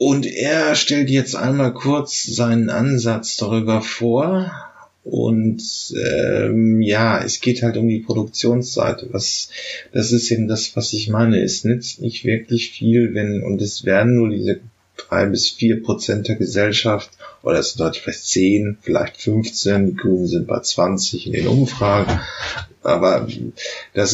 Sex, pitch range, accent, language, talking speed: male, 105-120 Hz, German, German, 155 wpm